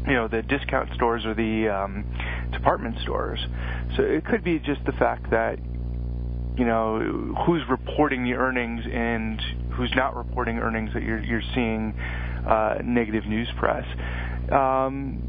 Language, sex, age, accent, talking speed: English, male, 30-49, American, 150 wpm